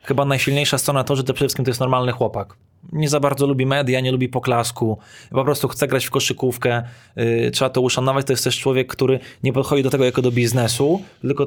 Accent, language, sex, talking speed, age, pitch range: native, Polish, male, 220 wpm, 20-39, 125-140 Hz